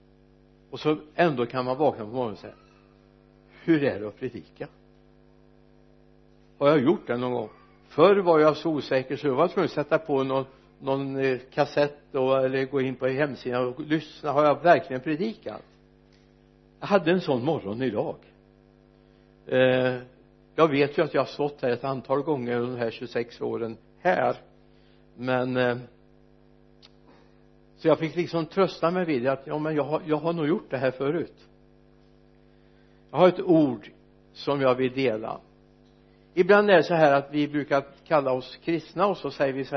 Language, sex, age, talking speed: Swedish, male, 60-79, 180 wpm